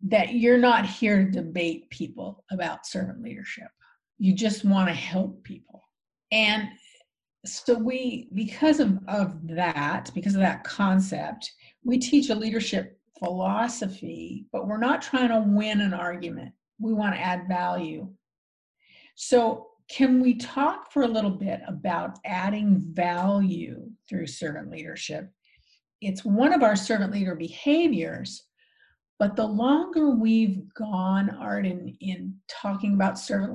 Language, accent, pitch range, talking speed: English, American, 180-225 Hz, 140 wpm